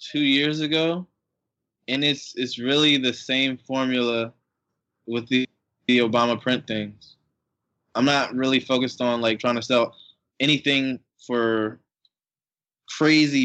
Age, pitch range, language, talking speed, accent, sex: 20-39, 120-140 Hz, English, 125 wpm, American, male